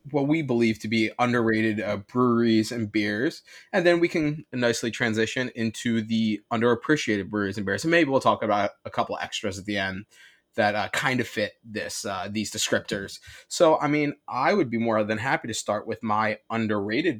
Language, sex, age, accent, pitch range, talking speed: English, male, 20-39, American, 110-140 Hz, 195 wpm